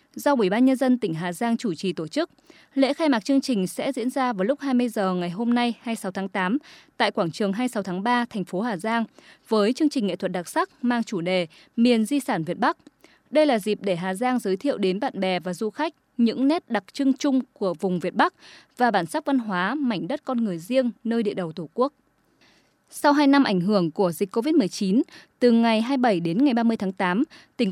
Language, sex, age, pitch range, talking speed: Vietnamese, female, 20-39, 195-270 Hz, 240 wpm